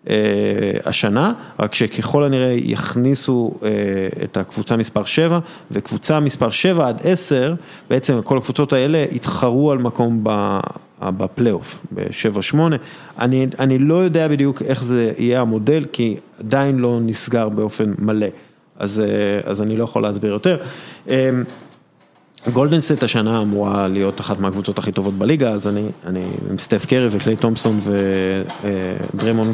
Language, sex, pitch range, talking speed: Hebrew, male, 110-135 Hz, 125 wpm